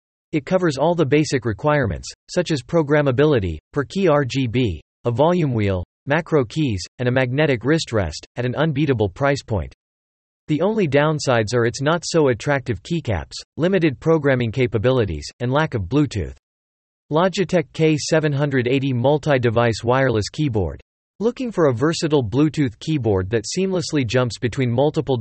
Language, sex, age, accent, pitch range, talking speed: English, male, 40-59, American, 115-155 Hz, 135 wpm